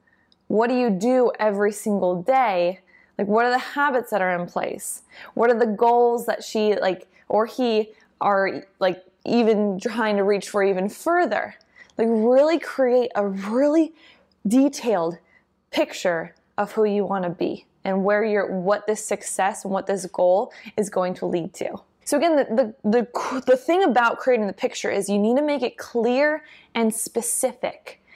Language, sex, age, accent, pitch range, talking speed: English, female, 20-39, American, 205-260 Hz, 175 wpm